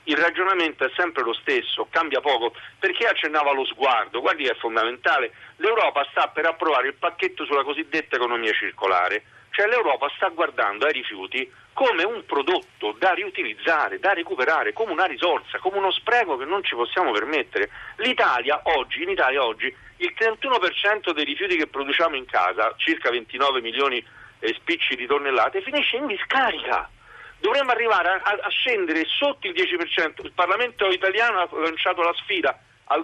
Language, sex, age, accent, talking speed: Italian, male, 50-69, native, 160 wpm